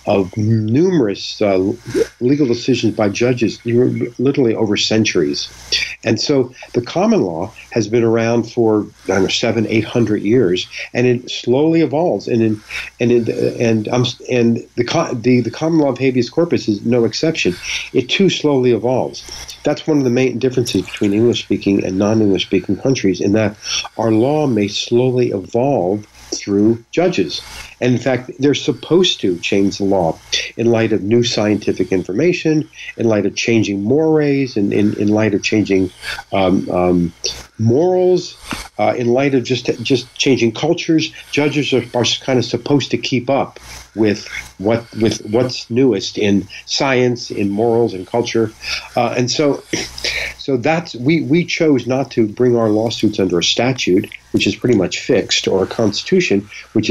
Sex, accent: male, American